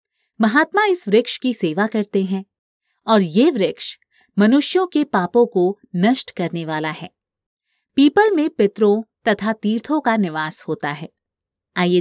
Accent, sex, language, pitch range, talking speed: native, female, Hindi, 185-270 Hz, 140 wpm